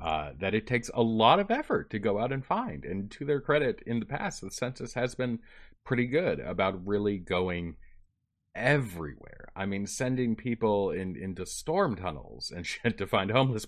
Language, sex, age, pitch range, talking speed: English, male, 30-49, 80-110 Hz, 190 wpm